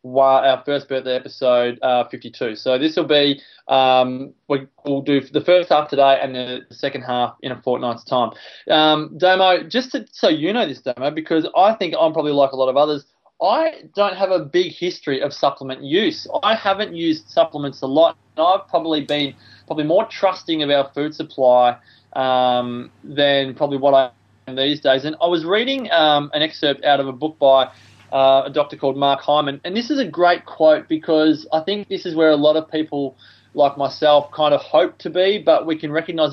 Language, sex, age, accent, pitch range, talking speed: English, male, 20-39, Australian, 140-170 Hz, 205 wpm